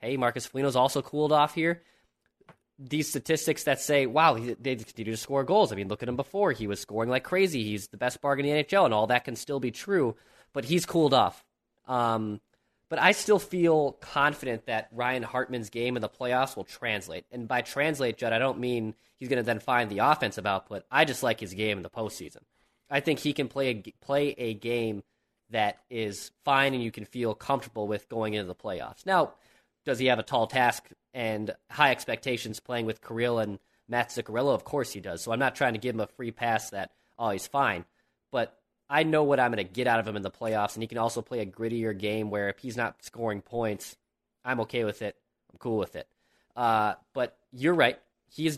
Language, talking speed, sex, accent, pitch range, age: English, 225 wpm, male, American, 110-140 Hz, 20-39